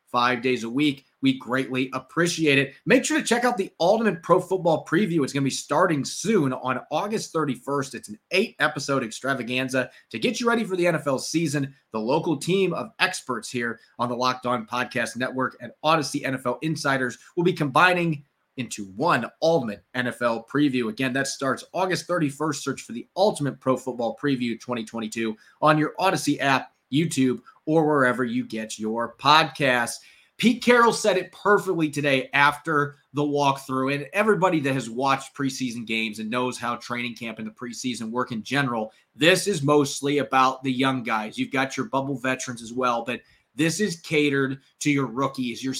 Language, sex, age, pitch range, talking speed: English, male, 30-49, 125-155 Hz, 180 wpm